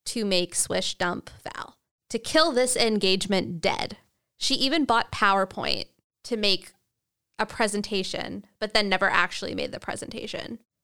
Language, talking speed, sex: English, 140 wpm, female